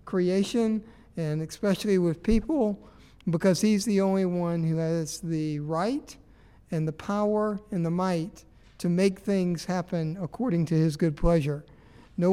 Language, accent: English, American